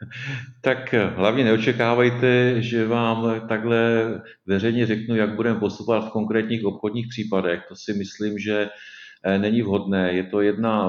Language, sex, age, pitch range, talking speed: Czech, male, 40-59, 95-105 Hz, 130 wpm